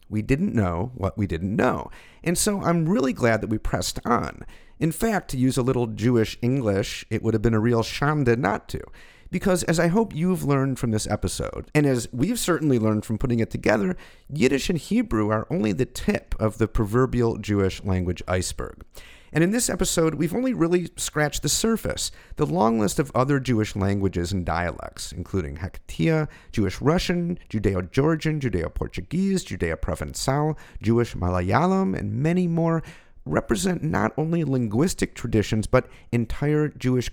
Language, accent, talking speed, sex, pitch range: English, American, 170 wpm, male, 100-150 Hz